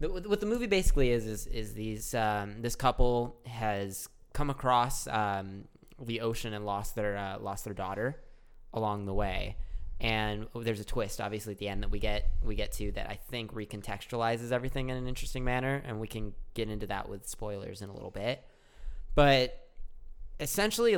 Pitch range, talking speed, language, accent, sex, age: 105-130 Hz, 185 wpm, English, American, male, 20-39